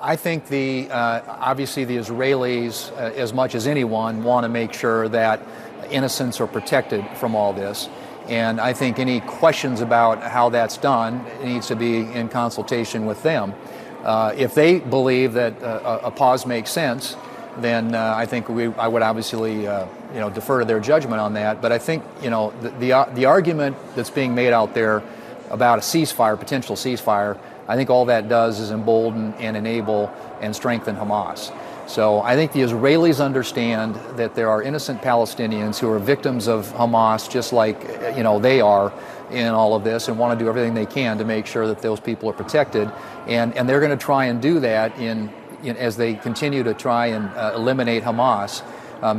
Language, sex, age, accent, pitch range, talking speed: English, male, 40-59, American, 110-130 Hz, 195 wpm